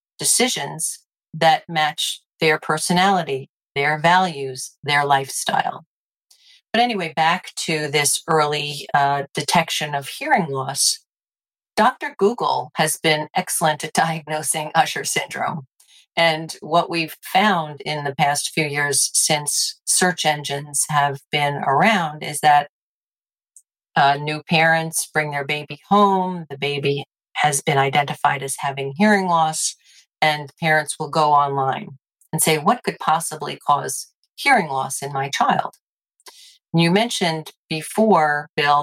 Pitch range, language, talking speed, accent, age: 140-165 Hz, English, 125 wpm, American, 50-69